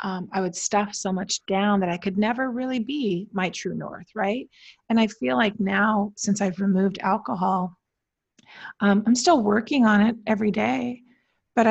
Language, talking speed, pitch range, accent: English, 180 wpm, 190-225 Hz, American